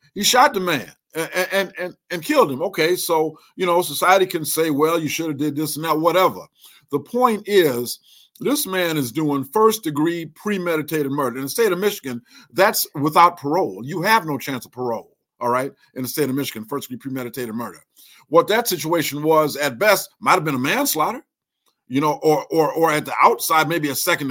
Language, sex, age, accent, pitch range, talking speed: English, male, 50-69, American, 145-180 Hz, 200 wpm